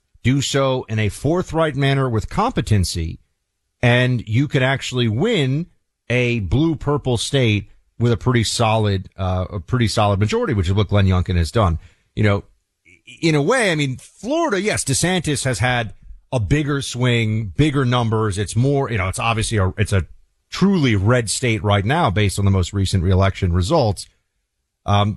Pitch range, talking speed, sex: 95-130 Hz, 170 wpm, male